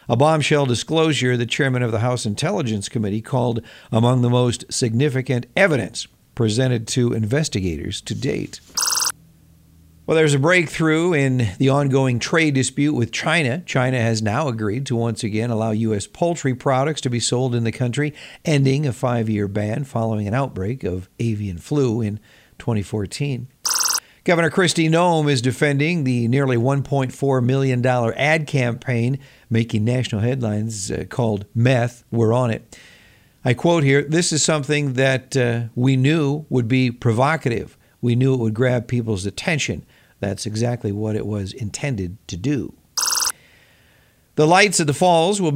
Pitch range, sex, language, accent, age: 115-145 Hz, male, Japanese, American, 50-69